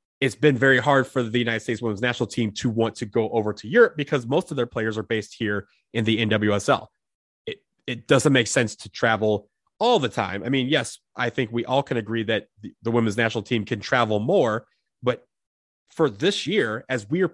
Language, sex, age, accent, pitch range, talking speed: English, male, 30-49, American, 115-155 Hz, 220 wpm